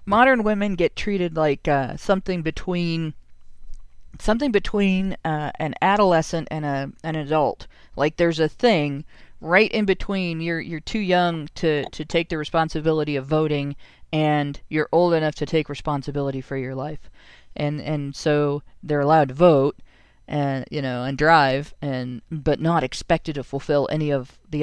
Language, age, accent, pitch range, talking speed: English, 40-59, American, 145-185 Hz, 160 wpm